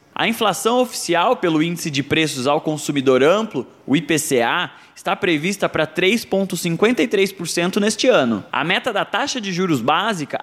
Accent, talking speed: Brazilian, 145 wpm